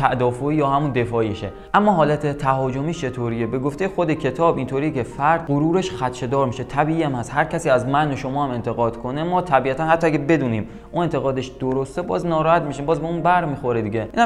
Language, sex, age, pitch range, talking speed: Persian, male, 20-39, 130-165 Hz, 200 wpm